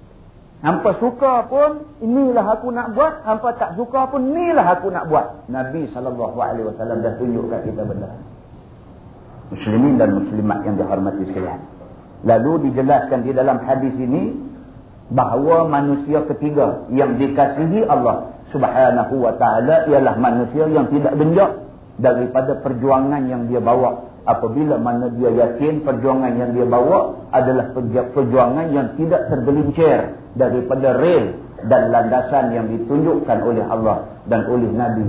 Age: 50-69